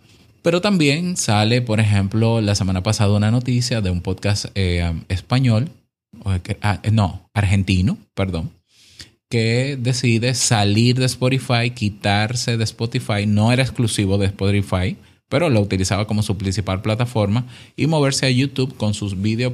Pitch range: 95-120 Hz